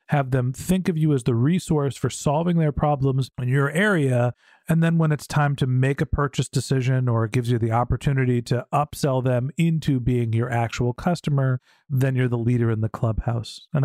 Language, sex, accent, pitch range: English, male, American, 140-185 Hz